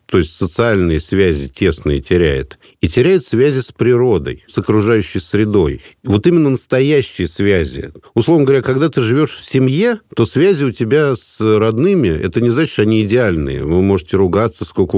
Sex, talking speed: male, 165 wpm